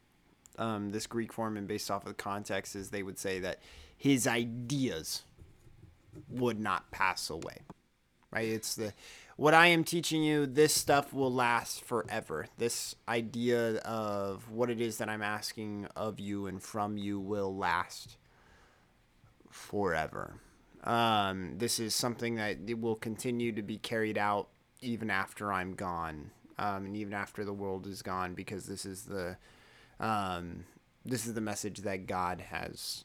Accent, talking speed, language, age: American, 160 wpm, English, 30-49